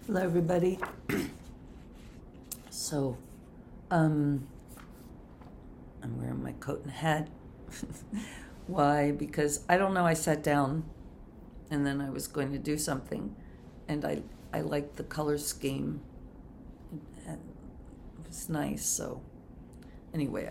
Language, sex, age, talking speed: English, female, 50-69, 110 wpm